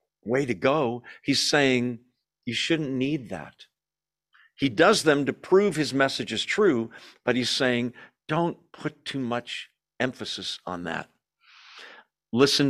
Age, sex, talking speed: 50-69, male, 135 wpm